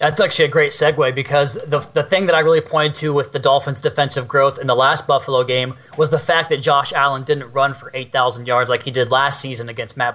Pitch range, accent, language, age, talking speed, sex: 140-170 Hz, American, English, 20-39, 250 wpm, male